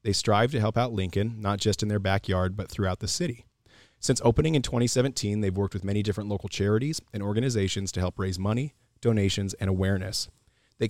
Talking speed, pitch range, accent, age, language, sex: 200 wpm, 100-115 Hz, American, 30-49, English, male